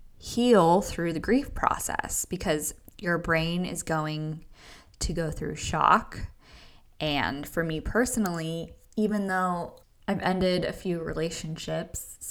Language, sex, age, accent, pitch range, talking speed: English, female, 10-29, American, 145-175 Hz, 120 wpm